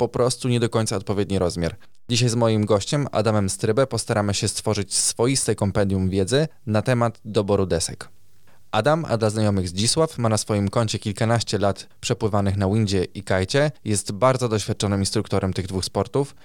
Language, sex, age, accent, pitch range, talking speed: Polish, male, 20-39, native, 100-120 Hz, 170 wpm